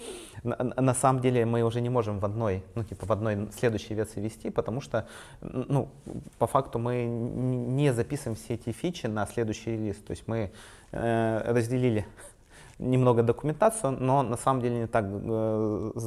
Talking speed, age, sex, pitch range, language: 165 wpm, 30-49, male, 110-130 Hz, Russian